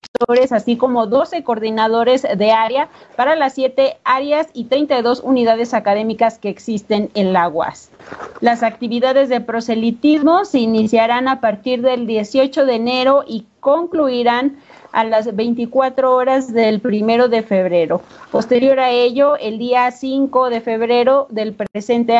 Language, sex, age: Spanish, female, 40-59